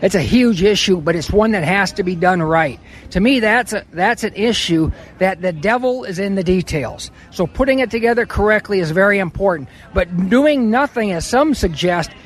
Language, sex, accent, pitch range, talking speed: English, male, American, 185-240 Hz, 200 wpm